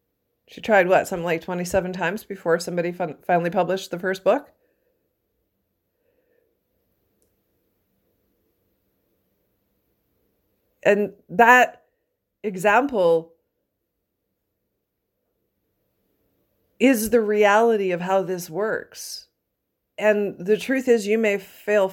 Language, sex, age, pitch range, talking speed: English, female, 40-59, 190-255 Hz, 85 wpm